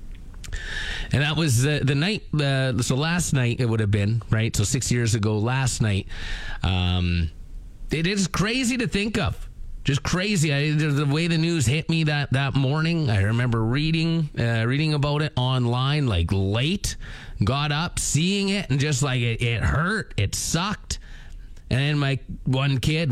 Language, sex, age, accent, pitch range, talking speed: English, male, 30-49, American, 120-165 Hz, 170 wpm